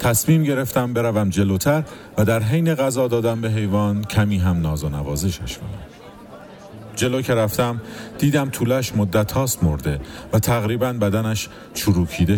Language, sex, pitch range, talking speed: Persian, male, 90-115 Hz, 130 wpm